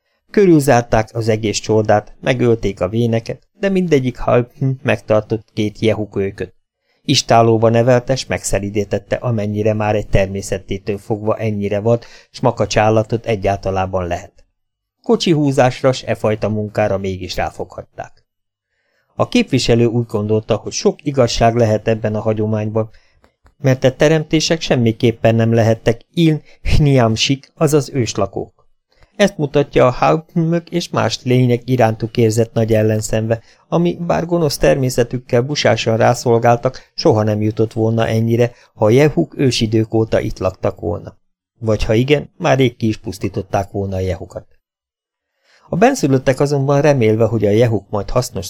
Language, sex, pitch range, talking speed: Hungarian, male, 105-130 Hz, 130 wpm